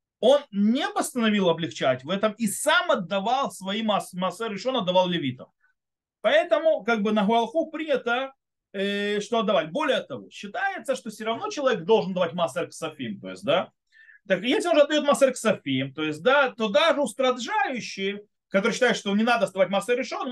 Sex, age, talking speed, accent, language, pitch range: male, 30-49, 160 wpm, native, Russian, 175-260 Hz